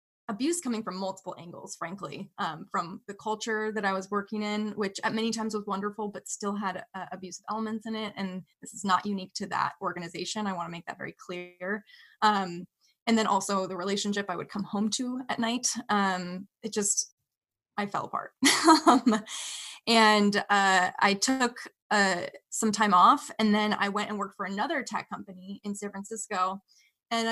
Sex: female